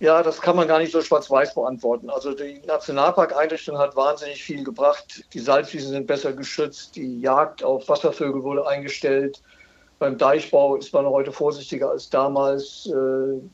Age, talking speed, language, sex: 50-69, 160 wpm, German, male